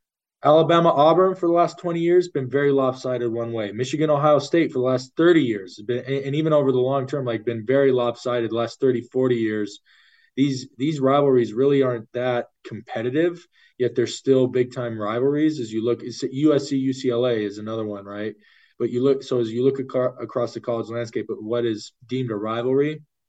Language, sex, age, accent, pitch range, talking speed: English, male, 20-39, American, 115-140 Hz, 200 wpm